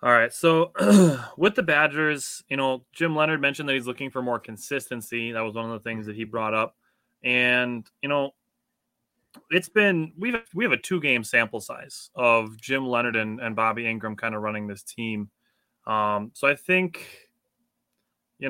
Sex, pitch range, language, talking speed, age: male, 110-145 Hz, English, 185 wpm, 20-39